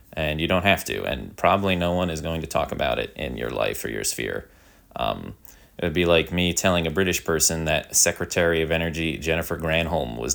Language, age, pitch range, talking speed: English, 20-39, 80-90 Hz, 220 wpm